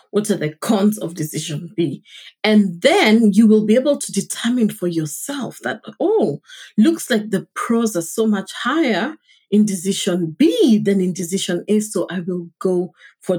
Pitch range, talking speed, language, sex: 170-215 Hz, 175 wpm, English, female